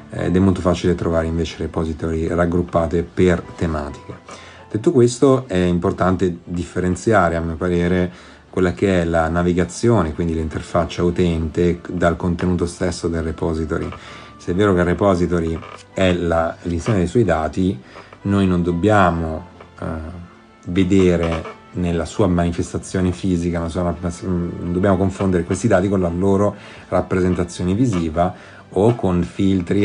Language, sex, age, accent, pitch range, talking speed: Italian, male, 40-59, native, 85-100 Hz, 130 wpm